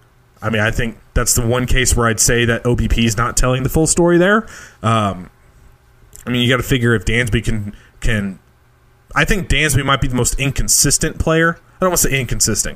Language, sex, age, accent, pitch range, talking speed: English, male, 20-39, American, 115-135 Hz, 215 wpm